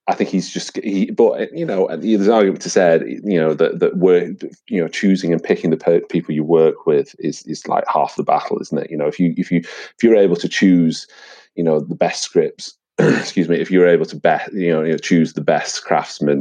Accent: British